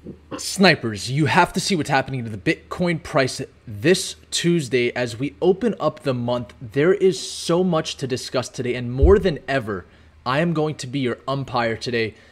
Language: English